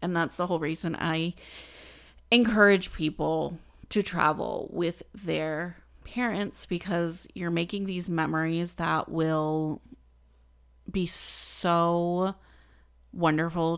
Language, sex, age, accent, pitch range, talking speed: English, female, 30-49, American, 155-185 Hz, 100 wpm